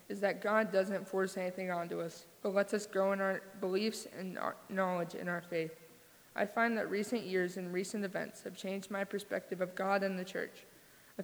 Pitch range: 180-200 Hz